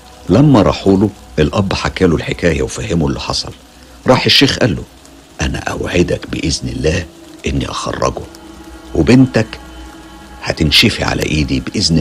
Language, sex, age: Arabic, male, 60-79